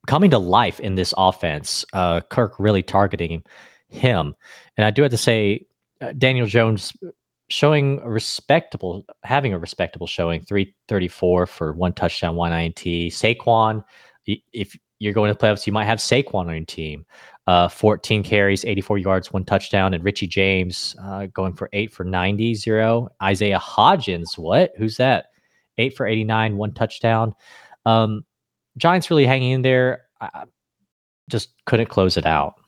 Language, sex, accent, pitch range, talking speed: English, male, American, 90-115 Hz, 155 wpm